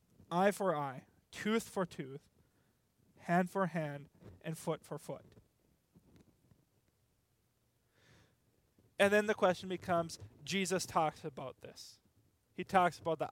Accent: American